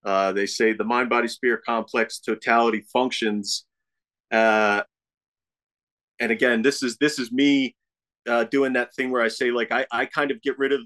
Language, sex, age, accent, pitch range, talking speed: English, male, 30-49, American, 110-130 Hz, 180 wpm